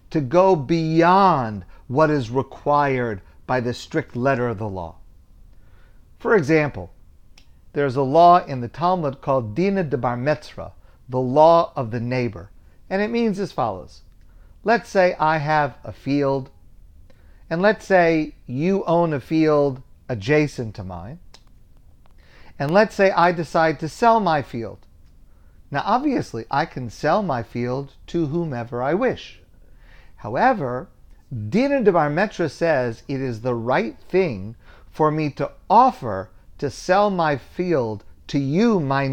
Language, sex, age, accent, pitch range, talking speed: English, male, 40-59, American, 115-170 Hz, 145 wpm